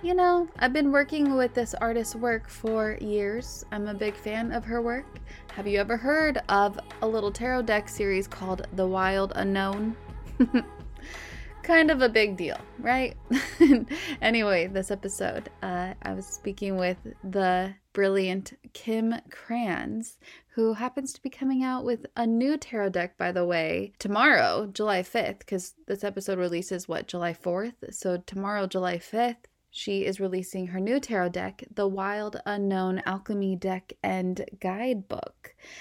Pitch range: 190-240 Hz